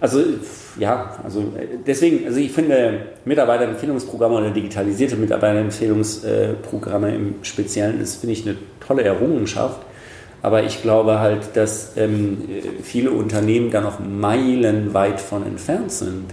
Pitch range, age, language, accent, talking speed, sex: 105-125 Hz, 40-59, German, German, 120 wpm, male